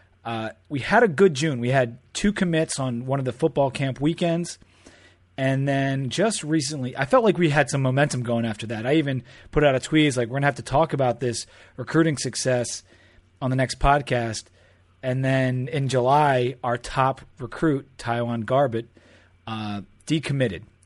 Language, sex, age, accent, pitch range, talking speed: English, male, 30-49, American, 115-150 Hz, 180 wpm